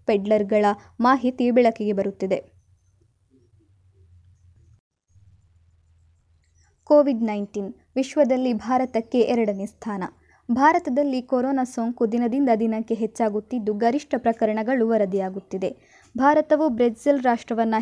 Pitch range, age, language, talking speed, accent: 210-260 Hz, 20-39, Kannada, 75 wpm, native